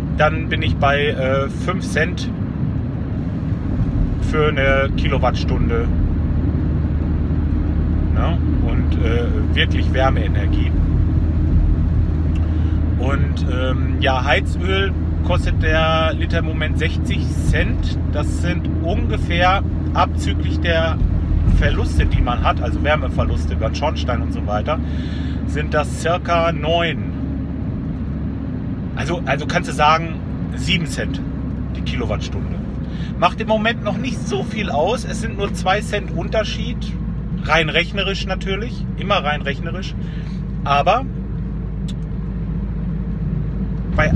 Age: 40-59